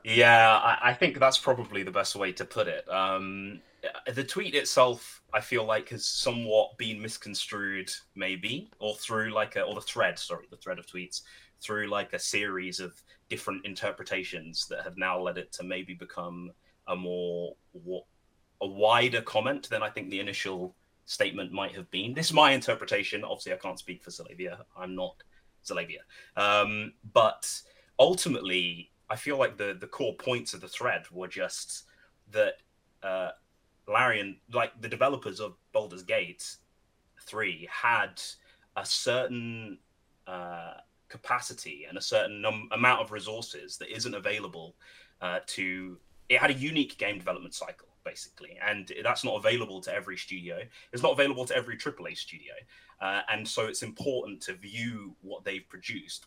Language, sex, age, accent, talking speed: English, male, 30-49, British, 160 wpm